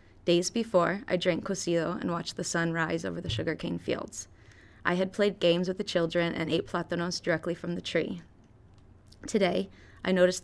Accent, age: American, 20-39